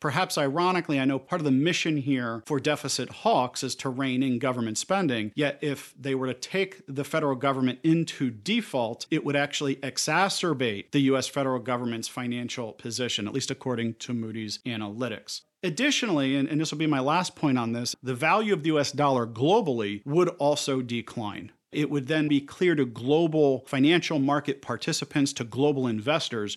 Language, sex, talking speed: English, male, 180 wpm